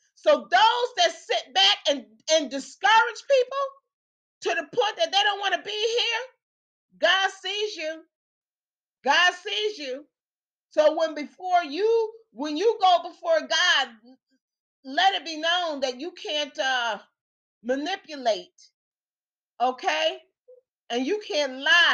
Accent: American